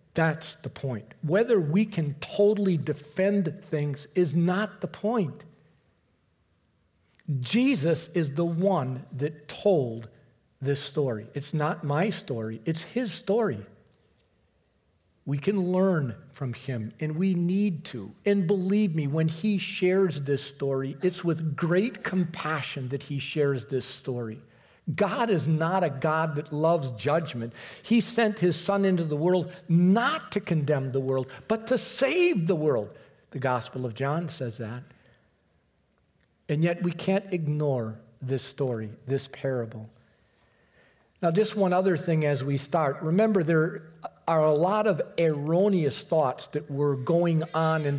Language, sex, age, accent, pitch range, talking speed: English, male, 50-69, American, 135-180 Hz, 145 wpm